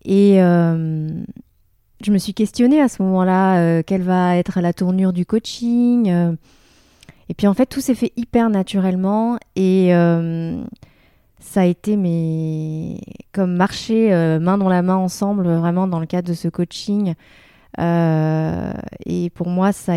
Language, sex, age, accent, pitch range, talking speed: French, female, 20-39, French, 175-200 Hz, 160 wpm